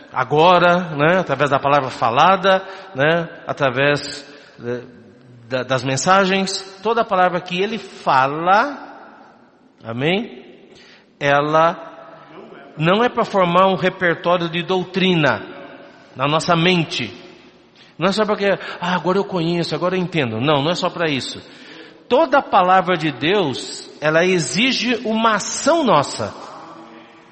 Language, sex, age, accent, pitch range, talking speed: Portuguese, male, 50-69, Brazilian, 145-215 Hz, 120 wpm